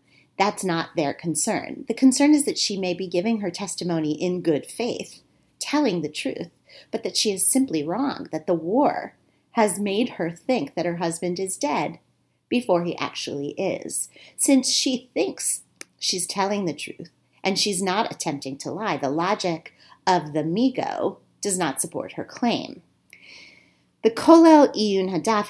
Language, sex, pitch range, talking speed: English, female, 165-225 Hz, 160 wpm